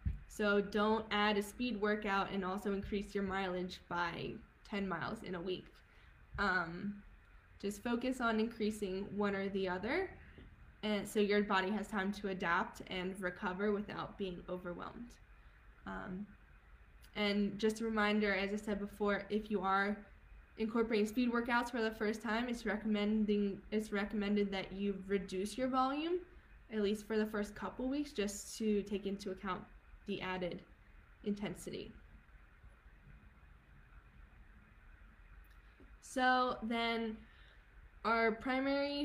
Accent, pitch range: American, 190-220 Hz